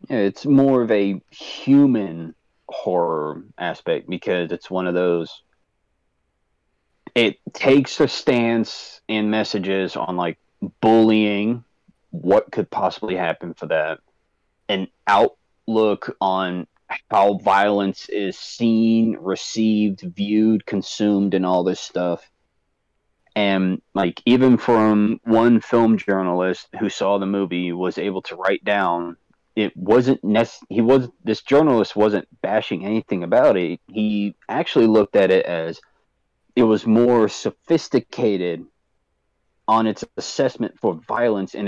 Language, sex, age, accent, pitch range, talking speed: English, male, 30-49, American, 95-115 Hz, 120 wpm